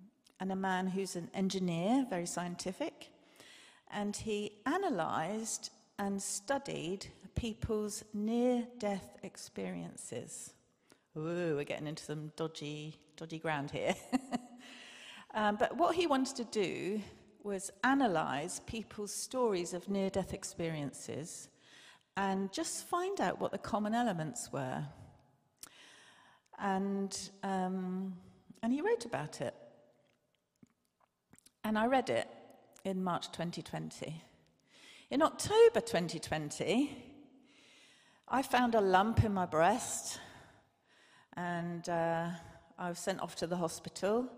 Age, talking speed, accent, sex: 40-59, 110 wpm, British, female